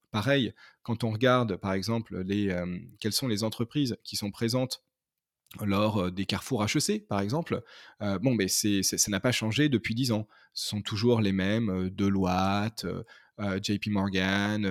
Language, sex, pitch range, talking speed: French, male, 105-125 Hz, 170 wpm